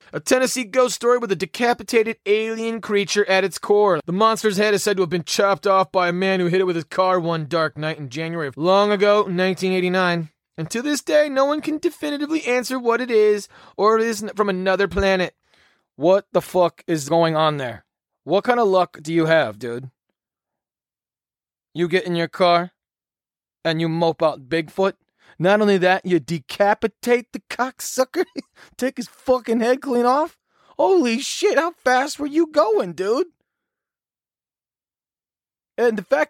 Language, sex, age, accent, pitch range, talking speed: English, male, 30-49, American, 170-245 Hz, 175 wpm